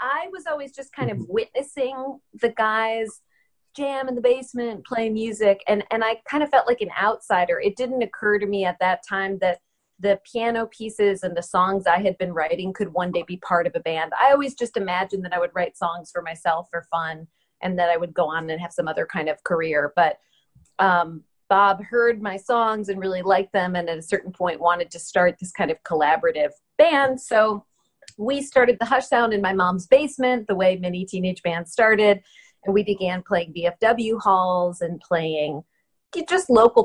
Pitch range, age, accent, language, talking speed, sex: 175-230 Hz, 30-49, American, English, 205 wpm, female